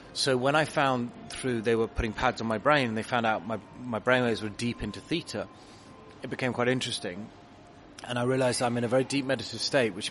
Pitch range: 115-140 Hz